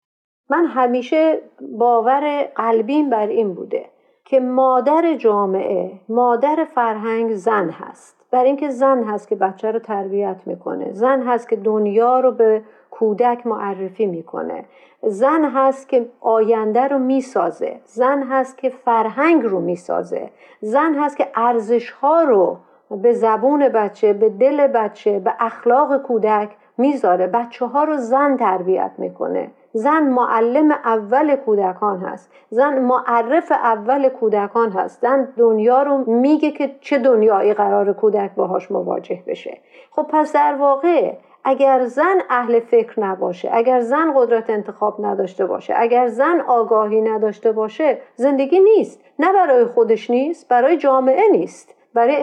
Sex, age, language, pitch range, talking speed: female, 50-69, Persian, 225-280 Hz, 135 wpm